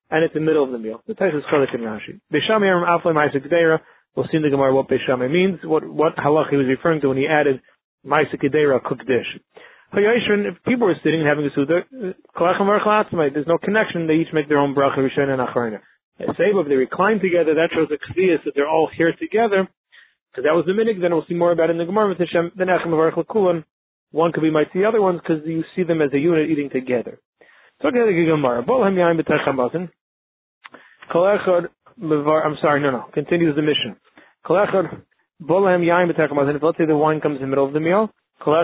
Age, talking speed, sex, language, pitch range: 30-49, 185 wpm, male, English, 145-175 Hz